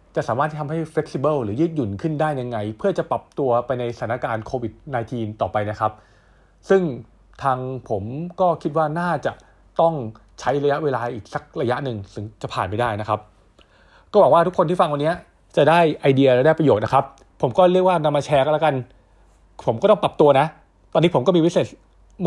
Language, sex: Thai, male